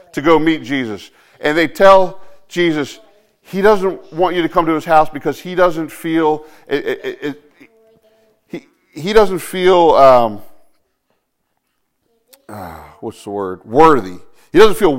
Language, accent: English, American